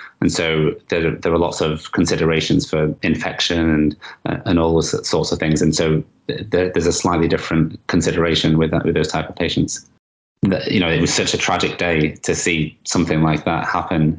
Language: English